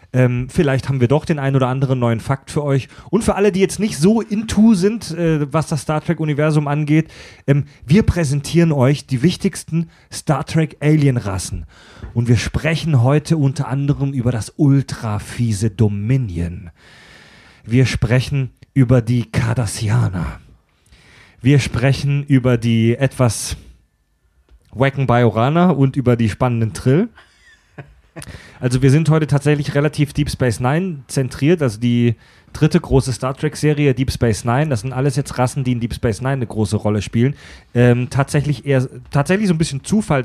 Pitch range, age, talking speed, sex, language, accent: 120-150 Hz, 30-49, 160 wpm, male, German, German